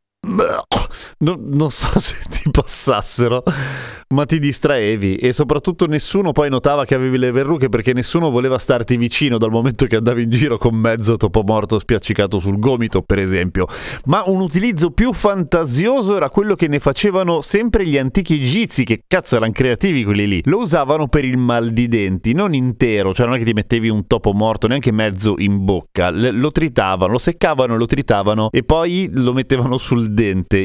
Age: 30-49